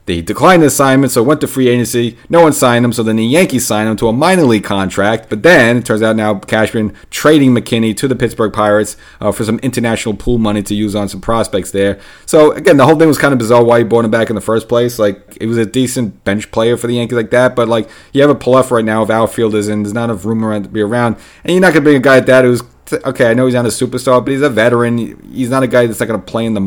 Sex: male